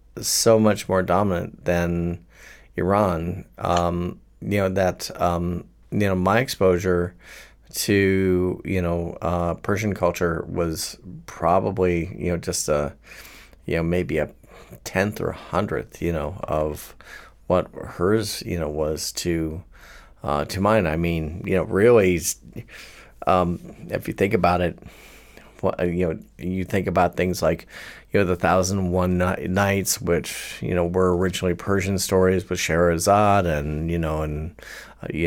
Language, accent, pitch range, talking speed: English, American, 85-95 Hz, 150 wpm